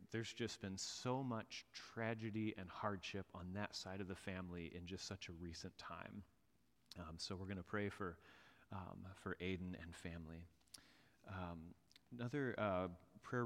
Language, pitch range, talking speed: English, 95-110 Hz, 160 wpm